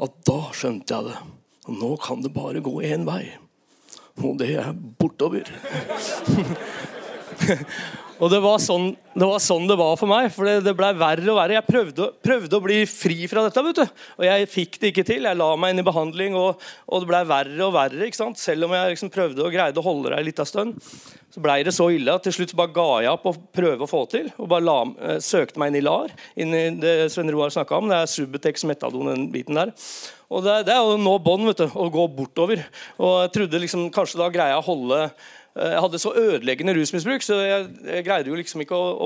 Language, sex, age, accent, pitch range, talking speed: English, male, 40-59, Swedish, 155-195 Hz, 225 wpm